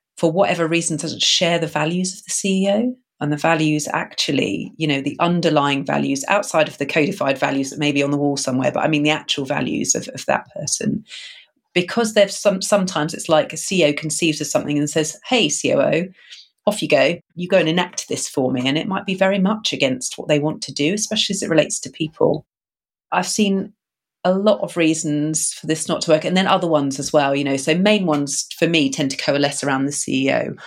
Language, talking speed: English, 225 wpm